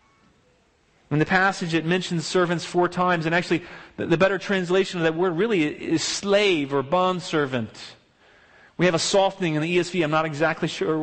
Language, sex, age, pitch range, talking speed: English, male, 40-59, 150-195 Hz, 175 wpm